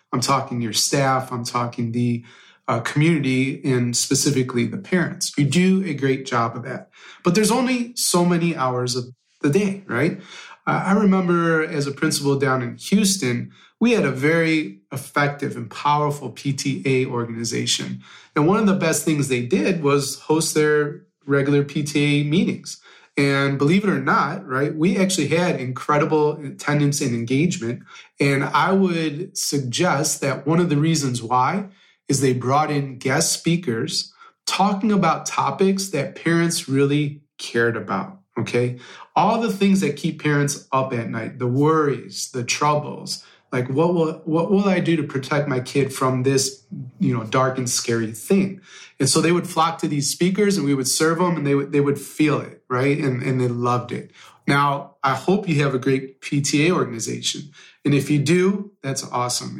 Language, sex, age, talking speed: English, male, 30-49, 175 wpm